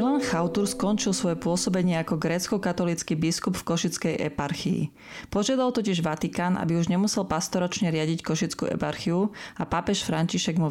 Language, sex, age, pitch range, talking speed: Slovak, female, 30-49, 155-185 Hz, 145 wpm